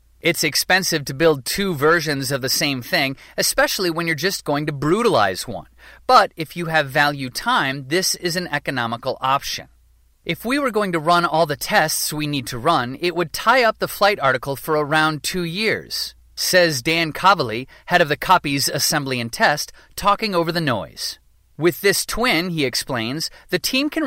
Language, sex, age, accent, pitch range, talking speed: English, male, 30-49, American, 145-185 Hz, 185 wpm